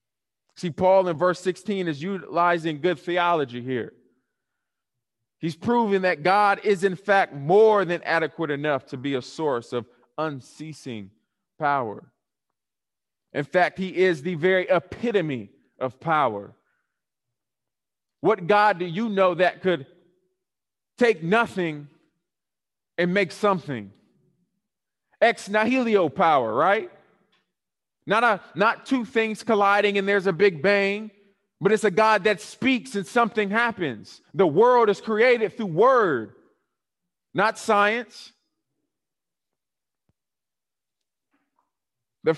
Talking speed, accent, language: 115 wpm, American, English